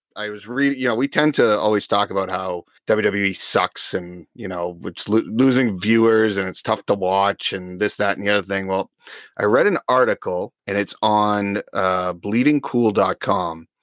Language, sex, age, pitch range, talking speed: English, male, 30-49, 100-125 Hz, 185 wpm